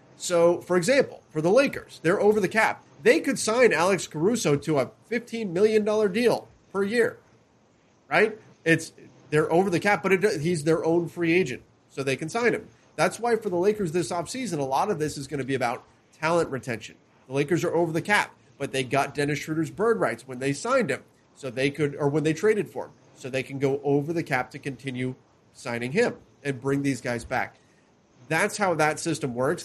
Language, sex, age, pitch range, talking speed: English, male, 30-49, 130-165 Hz, 215 wpm